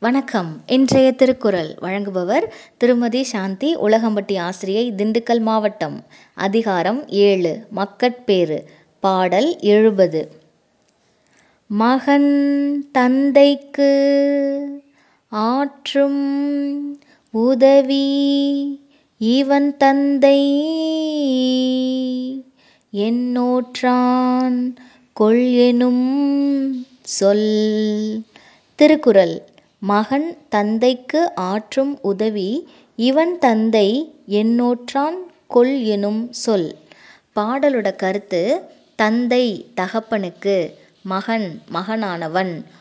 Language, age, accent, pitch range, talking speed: English, 20-39, Indian, 205-275 Hz, 55 wpm